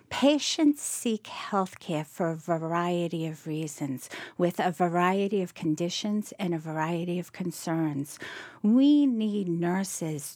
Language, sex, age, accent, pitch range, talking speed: English, female, 50-69, American, 165-225 Hz, 125 wpm